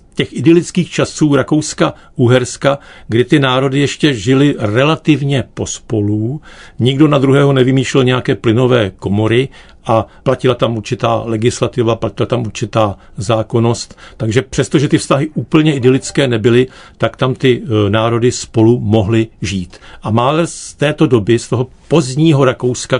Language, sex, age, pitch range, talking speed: Czech, male, 50-69, 115-145 Hz, 135 wpm